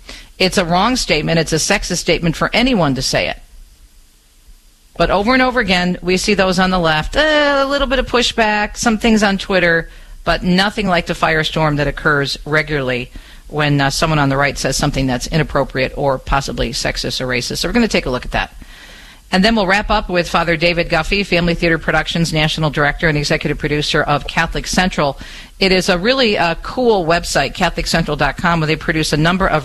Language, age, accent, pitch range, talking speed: English, 50-69, American, 145-185 Hz, 200 wpm